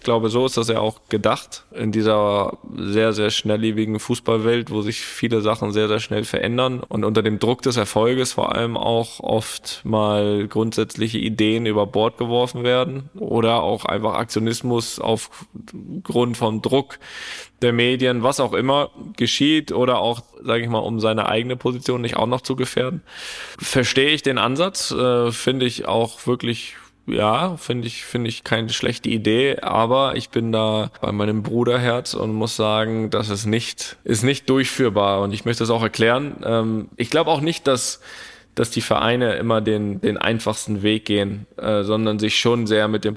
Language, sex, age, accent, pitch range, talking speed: German, male, 10-29, German, 110-125 Hz, 170 wpm